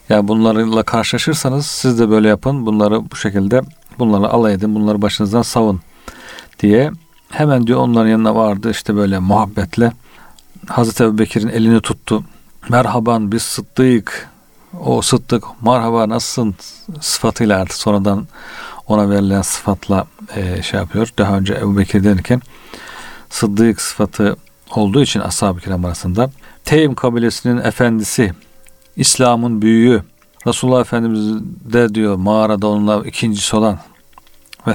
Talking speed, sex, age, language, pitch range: 125 wpm, male, 50-69, Turkish, 105-125 Hz